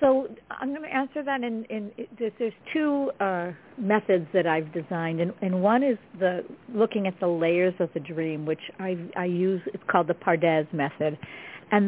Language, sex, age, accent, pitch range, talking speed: English, female, 50-69, American, 165-210 Hz, 185 wpm